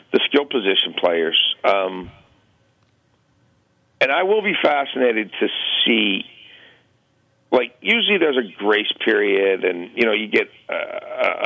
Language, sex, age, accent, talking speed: English, male, 50-69, American, 125 wpm